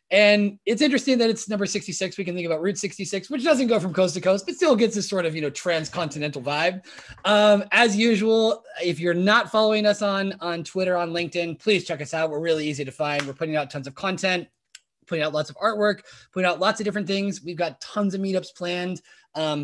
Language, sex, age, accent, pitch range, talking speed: English, male, 20-39, American, 150-205 Hz, 230 wpm